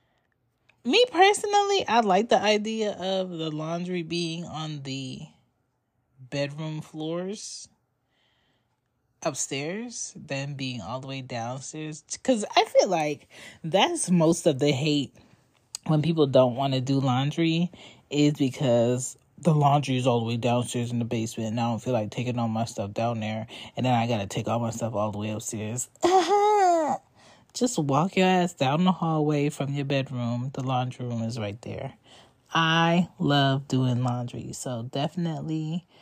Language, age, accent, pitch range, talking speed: English, 20-39, American, 120-165 Hz, 160 wpm